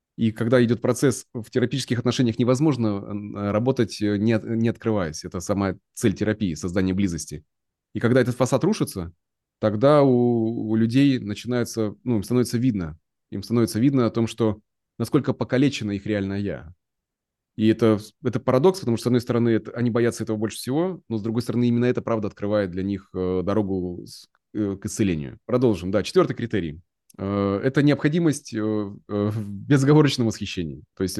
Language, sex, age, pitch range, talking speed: Russian, male, 20-39, 100-125 Hz, 155 wpm